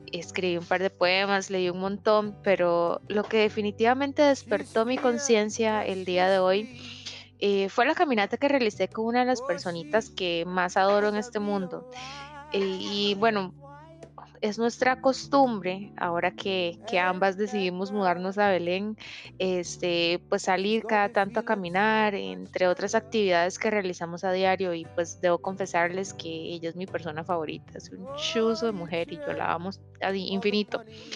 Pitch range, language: 185-230 Hz, Spanish